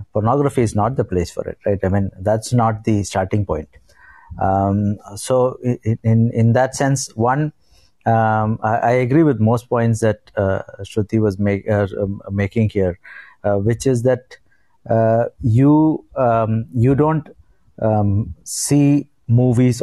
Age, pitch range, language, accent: 50-69, 105-130 Hz, English, Indian